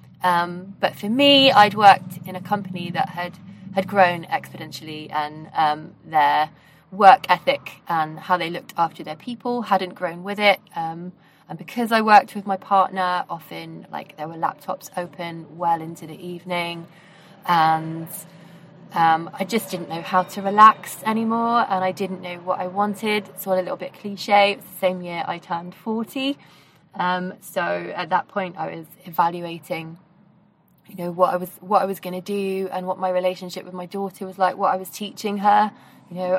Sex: female